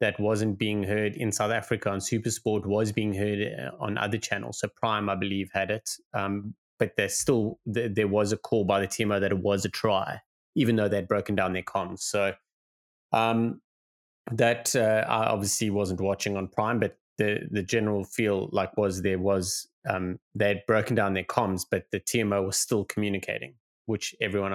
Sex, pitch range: male, 100-120 Hz